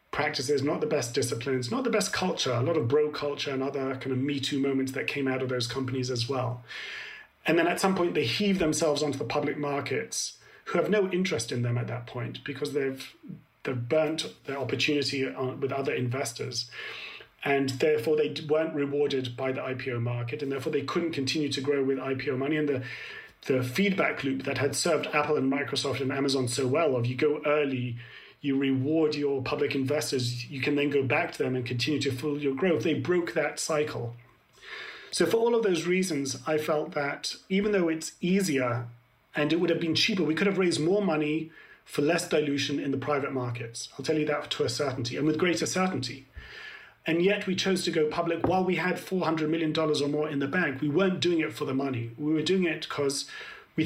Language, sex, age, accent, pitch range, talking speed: English, male, 40-59, British, 135-160 Hz, 215 wpm